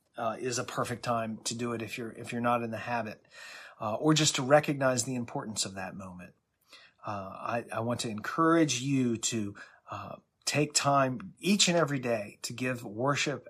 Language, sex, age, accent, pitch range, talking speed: English, male, 30-49, American, 115-155 Hz, 195 wpm